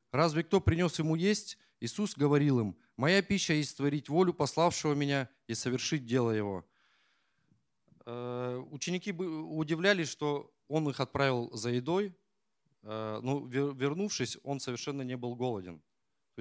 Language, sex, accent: Russian, male, native